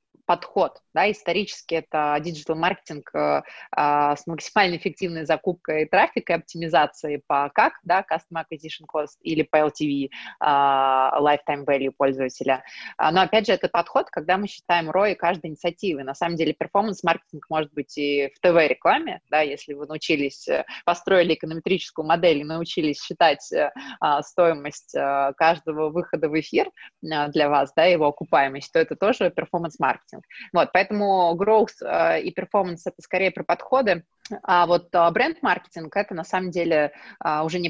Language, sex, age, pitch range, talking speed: Russian, female, 20-39, 150-185 Hz, 145 wpm